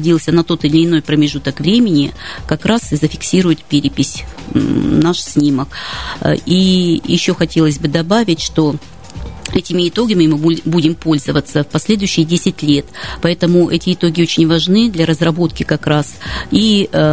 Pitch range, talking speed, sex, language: 155-180 Hz, 135 wpm, female, Russian